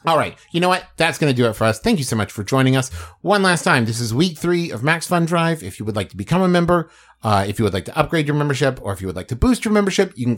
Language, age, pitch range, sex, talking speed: English, 30-49, 110-150 Hz, male, 335 wpm